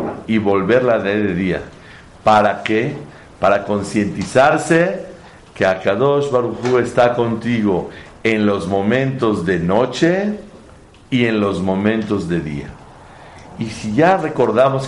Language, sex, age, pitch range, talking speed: Spanish, male, 50-69, 105-135 Hz, 115 wpm